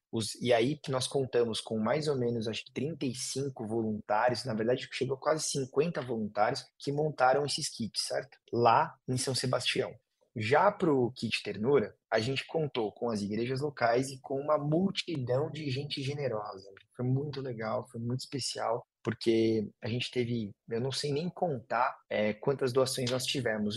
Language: Portuguese